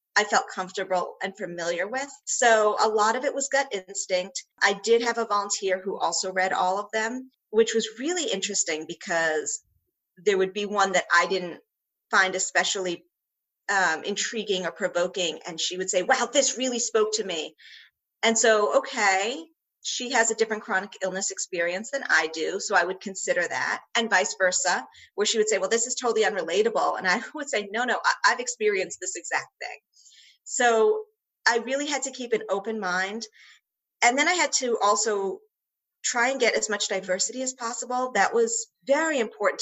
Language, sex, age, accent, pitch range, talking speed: English, female, 40-59, American, 190-240 Hz, 185 wpm